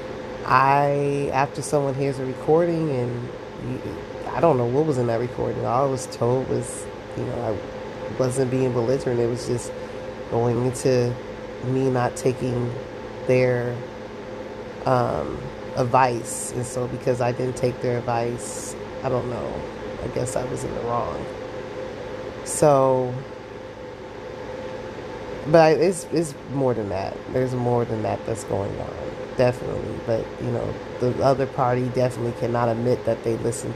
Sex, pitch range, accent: female, 120-135 Hz, American